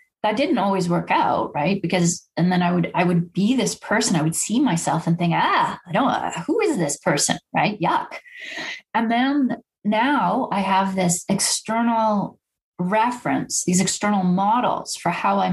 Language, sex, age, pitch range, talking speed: English, female, 30-49, 185-250 Hz, 180 wpm